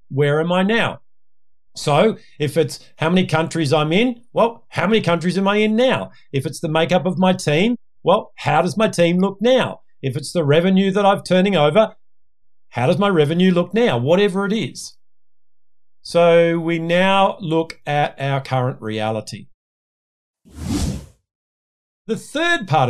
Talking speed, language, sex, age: 160 wpm, English, male, 50-69